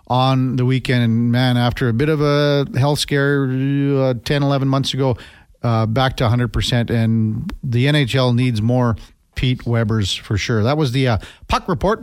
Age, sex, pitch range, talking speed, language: 50-69, male, 120-170 Hz, 175 wpm, English